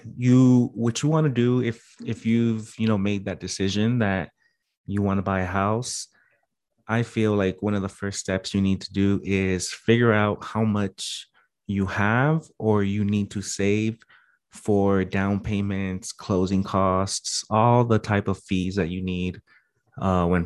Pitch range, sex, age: 95-110 Hz, male, 30-49